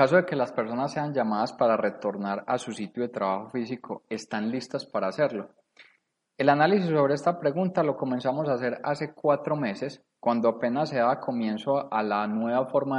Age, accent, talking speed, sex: 20-39, Colombian, 190 wpm, male